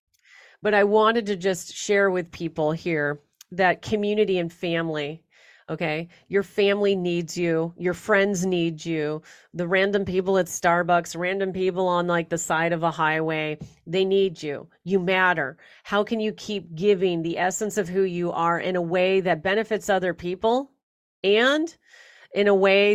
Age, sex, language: 40-59, female, English